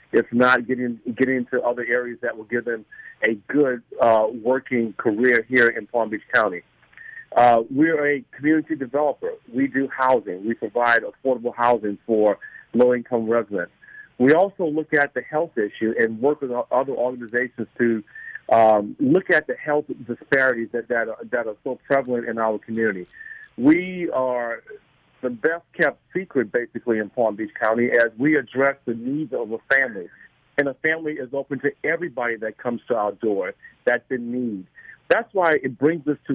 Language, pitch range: English, 120-150 Hz